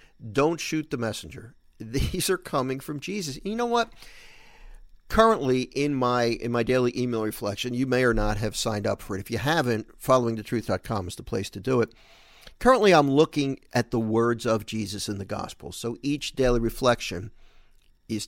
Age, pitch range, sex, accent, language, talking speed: 50-69, 115-150 Hz, male, American, English, 180 wpm